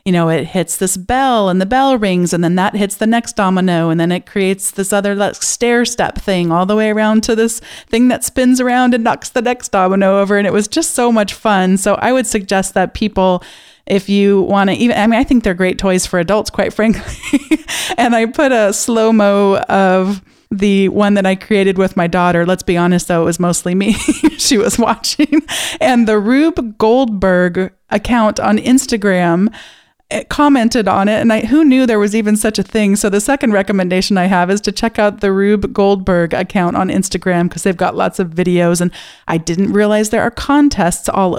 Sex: female